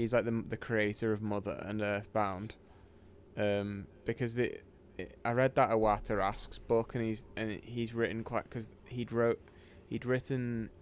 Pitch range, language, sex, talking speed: 100-115 Hz, English, male, 160 wpm